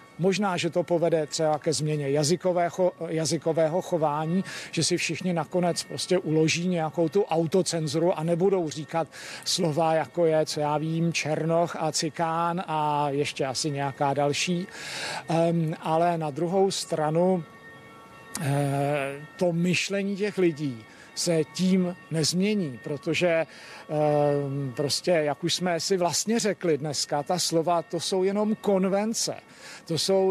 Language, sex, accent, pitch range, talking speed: Czech, male, native, 150-180 Hz, 130 wpm